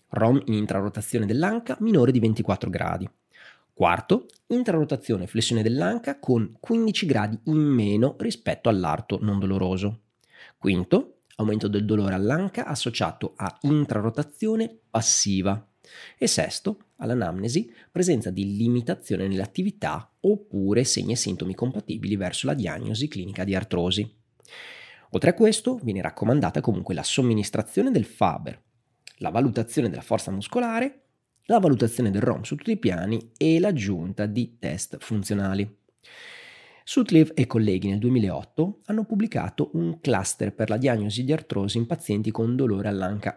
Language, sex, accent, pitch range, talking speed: Italian, male, native, 100-155 Hz, 135 wpm